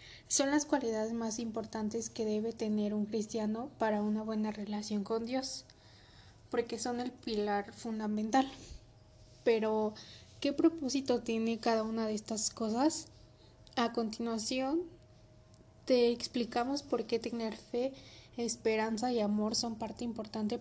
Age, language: 20-39, Spanish